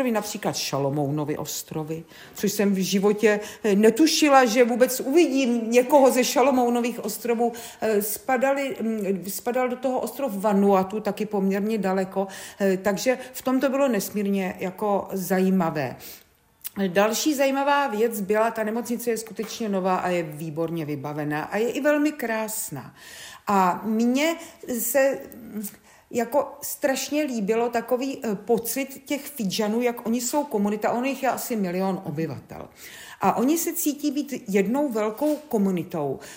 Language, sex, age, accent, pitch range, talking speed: Czech, female, 50-69, native, 195-255 Hz, 130 wpm